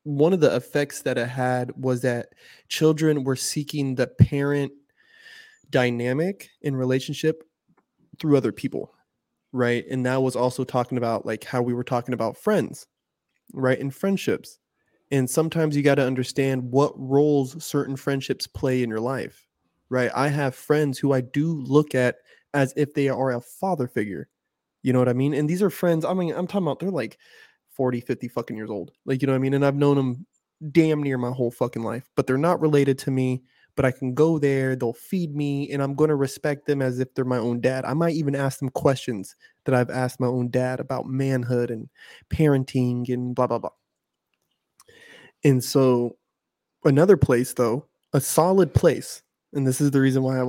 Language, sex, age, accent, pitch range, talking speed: English, male, 20-39, American, 125-150 Hz, 195 wpm